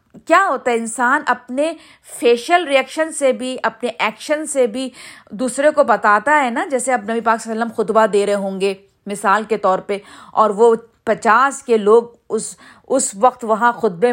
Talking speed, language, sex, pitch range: 190 wpm, Urdu, female, 225-290 Hz